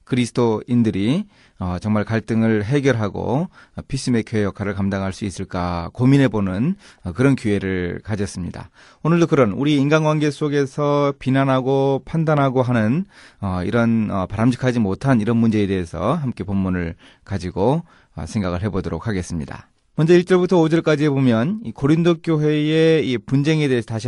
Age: 30-49